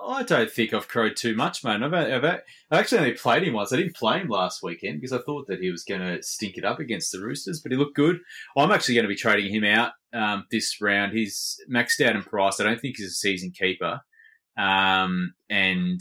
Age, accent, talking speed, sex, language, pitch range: 20-39, Australian, 240 wpm, male, English, 90-110 Hz